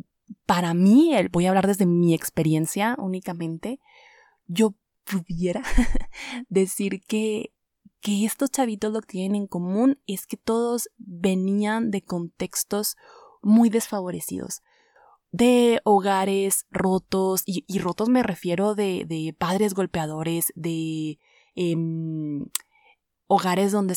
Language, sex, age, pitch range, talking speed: Spanish, female, 20-39, 170-220 Hz, 115 wpm